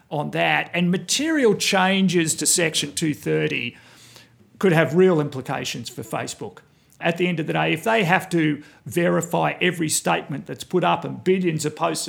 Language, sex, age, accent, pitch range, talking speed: English, male, 50-69, Australian, 150-180 Hz, 170 wpm